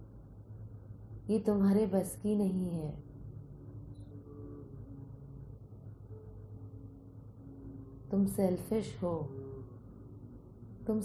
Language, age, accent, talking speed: Hindi, 30-49, native, 55 wpm